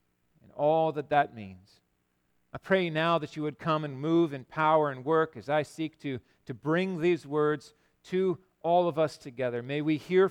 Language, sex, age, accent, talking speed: English, male, 40-59, American, 190 wpm